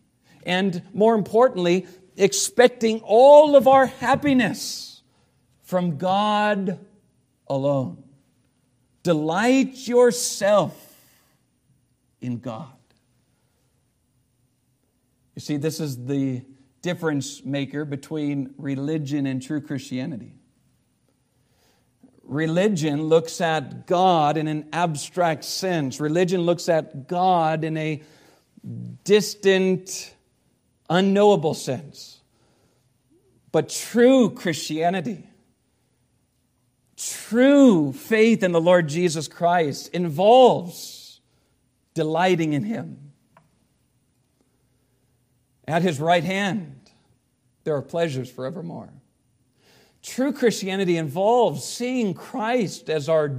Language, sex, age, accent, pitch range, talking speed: English, male, 50-69, American, 130-190 Hz, 80 wpm